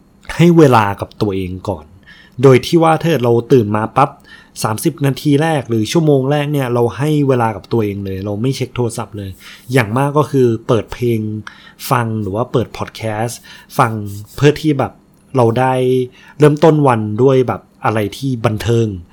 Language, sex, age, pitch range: Thai, male, 20-39, 110-150 Hz